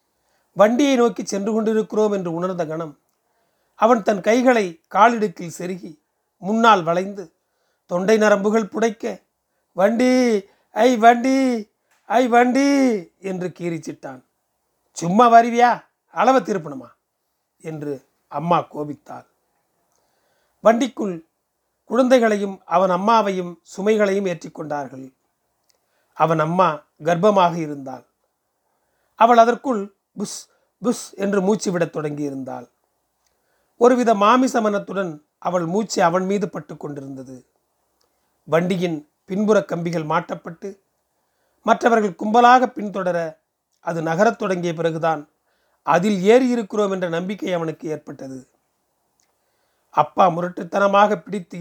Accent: native